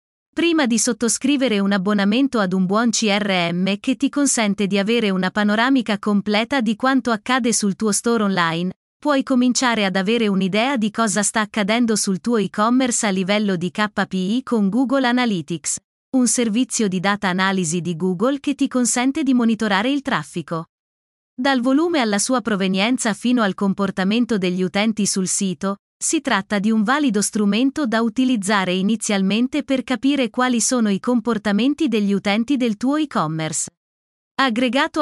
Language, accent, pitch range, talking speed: Italian, native, 200-255 Hz, 155 wpm